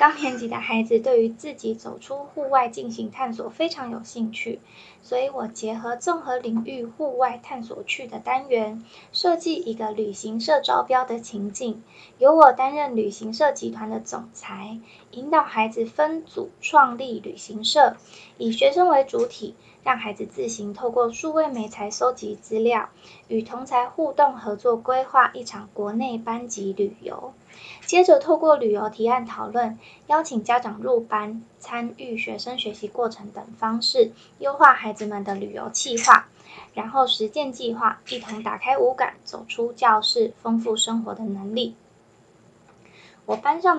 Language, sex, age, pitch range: Chinese, female, 10-29, 220-265 Hz